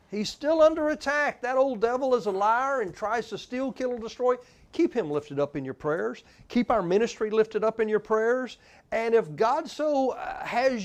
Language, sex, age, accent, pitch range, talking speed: English, male, 40-59, American, 175-240 Hz, 205 wpm